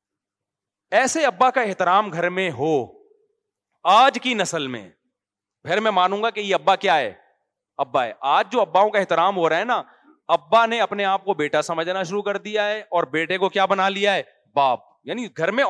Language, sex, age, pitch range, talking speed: Urdu, male, 30-49, 160-220 Hz, 205 wpm